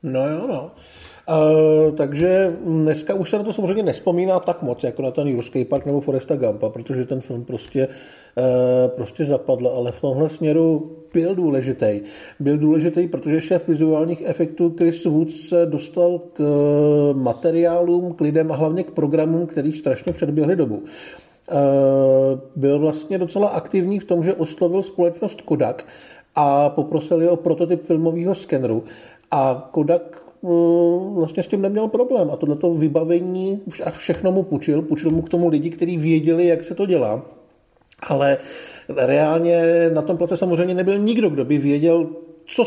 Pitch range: 150-175 Hz